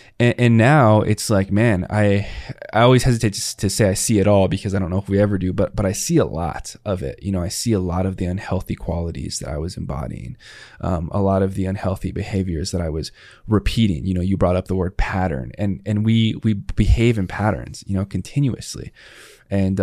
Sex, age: male, 20-39